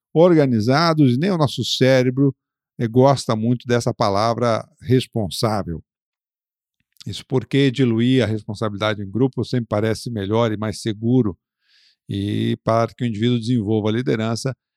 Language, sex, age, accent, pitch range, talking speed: Portuguese, male, 50-69, Brazilian, 110-135 Hz, 125 wpm